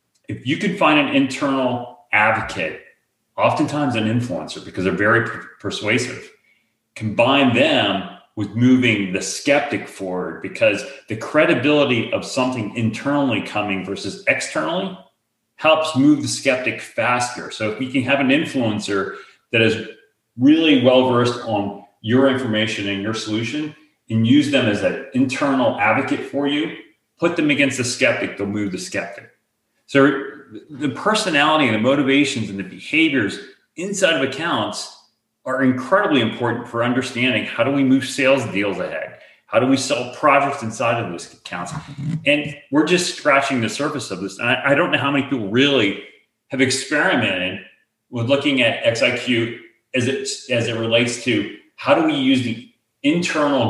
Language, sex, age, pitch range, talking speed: English, male, 30-49, 115-145 Hz, 155 wpm